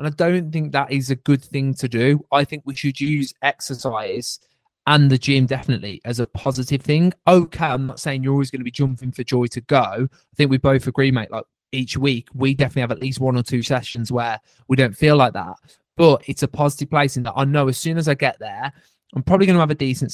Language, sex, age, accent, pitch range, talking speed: English, male, 20-39, British, 120-145 Hz, 255 wpm